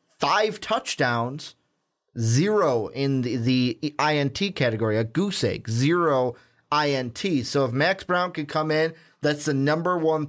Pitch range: 130-155 Hz